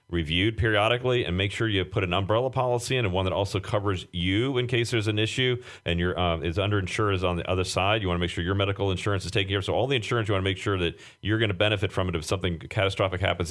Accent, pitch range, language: American, 90-110 Hz, English